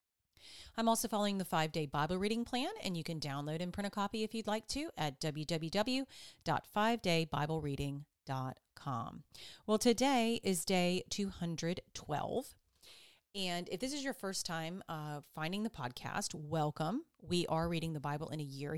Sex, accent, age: female, American, 30-49